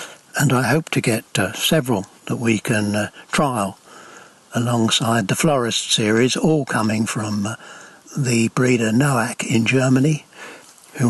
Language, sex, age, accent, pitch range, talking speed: English, male, 60-79, British, 110-135 Hz, 140 wpm